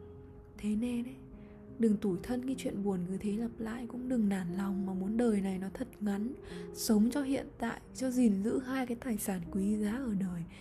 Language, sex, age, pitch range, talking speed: Vietnamese, female, 20-39, 195-245 Hz, 220 wpm